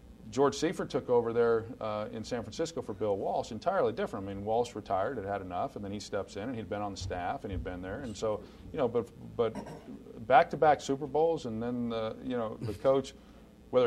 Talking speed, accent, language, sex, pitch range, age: 240 wpm, American, English, male, 110-145 Hz, 40-59